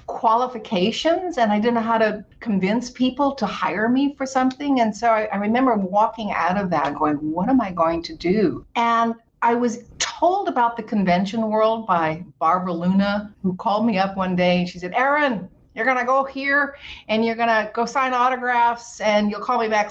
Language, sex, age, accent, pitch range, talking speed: English, female, 60-79, American, 180-240 Hz, 205 wpm